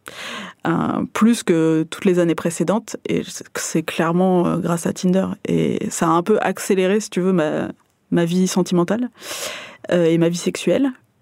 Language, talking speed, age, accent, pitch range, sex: French, 170 wpm, 20-39, French, 165-195 Hz, female